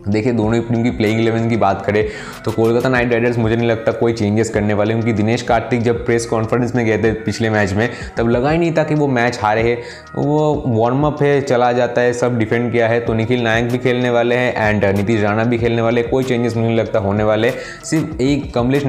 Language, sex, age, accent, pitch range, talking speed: Hindi, male, 20-39, native, 105-120 Hz, 240 wpm